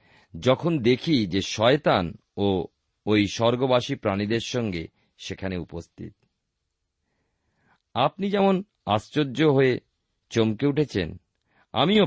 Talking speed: 90 wpm